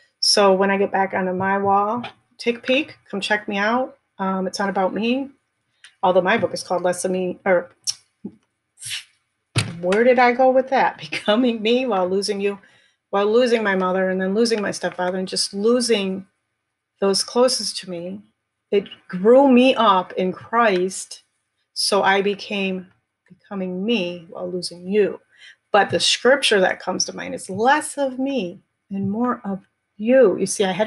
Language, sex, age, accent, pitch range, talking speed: English, female, 30-49, American, 185-230 Hz, 175 wpm